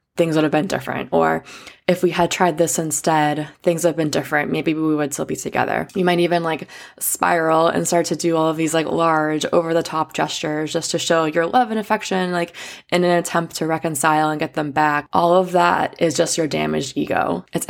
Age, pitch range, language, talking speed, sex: 20-39, 150-170 Hz, English, 215 wpm, female